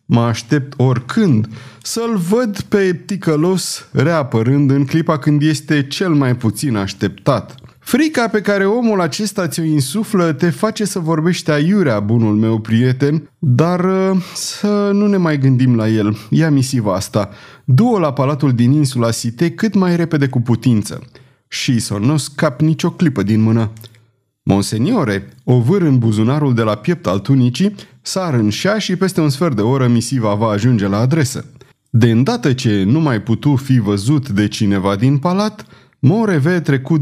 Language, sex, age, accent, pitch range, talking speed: Romanian, male, 30-49, native, 115-165 Hz, 155 wpm